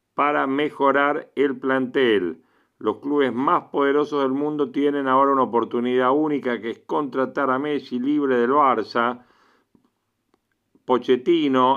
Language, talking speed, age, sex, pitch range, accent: Spanish, 120 wpm, 50-69, male, 125-145 Hz, Argentinian